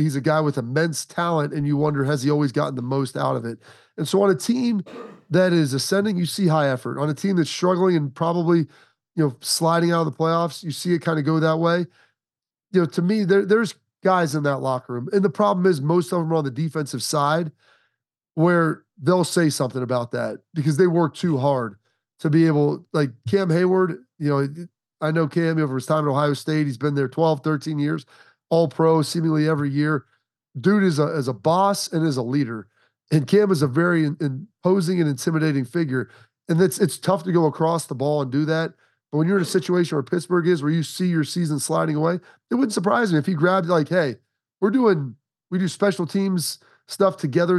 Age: 30-49